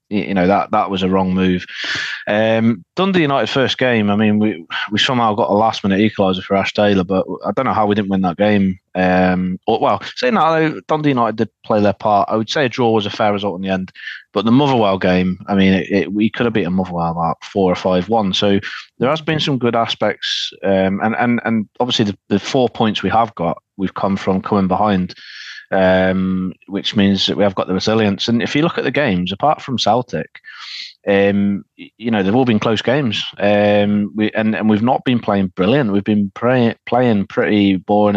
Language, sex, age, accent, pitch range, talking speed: English, male, 20-39, British, 95-110 Hz, 220 wpm